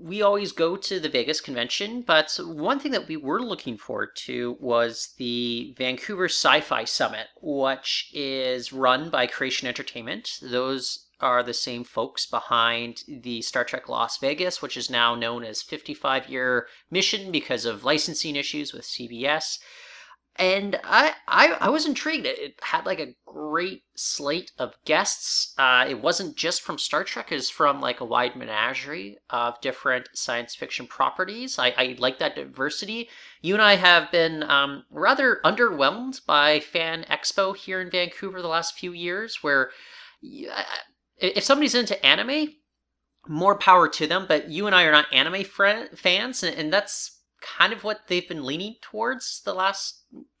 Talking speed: 165 wpm